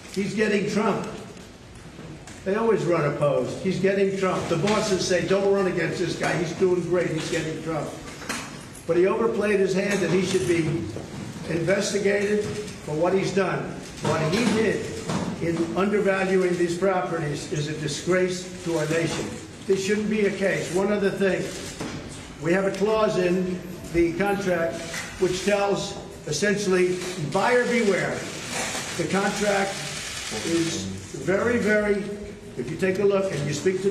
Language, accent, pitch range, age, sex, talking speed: English, American, 170-205 Hz, 50-69, male, 150 wpm